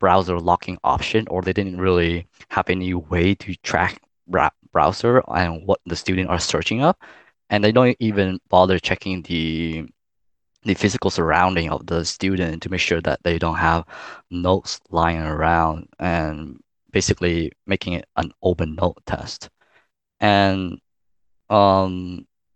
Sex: male